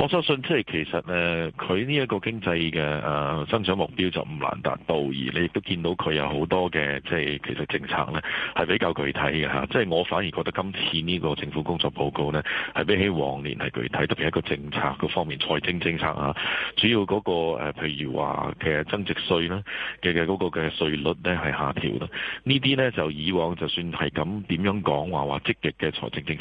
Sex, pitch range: male, 75-90 Hz